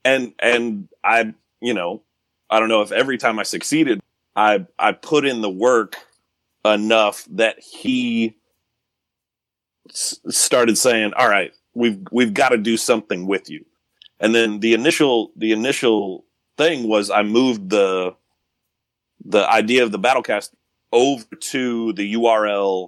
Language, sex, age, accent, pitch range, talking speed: English, male, 30-49, American, 100-115 Hz, 145 wpm